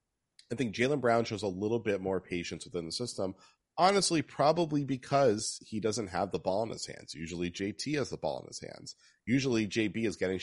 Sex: male